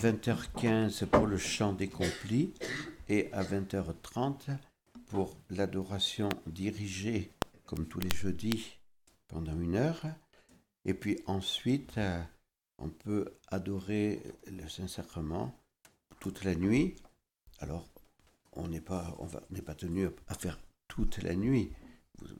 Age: 60-79